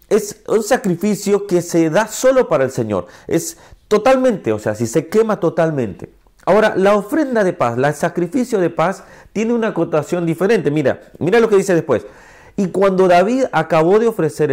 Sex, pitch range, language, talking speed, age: male, 125-195 Hz, Spanish, 180 wpm, 40-59